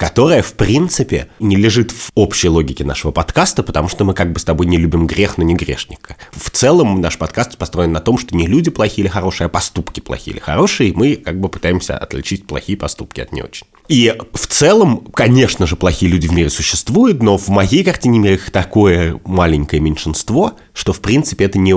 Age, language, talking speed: 30-49, Russian, 205 wpm